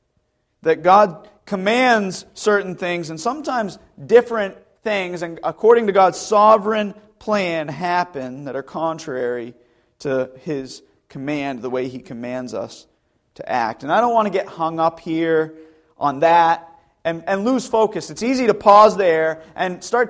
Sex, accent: male, American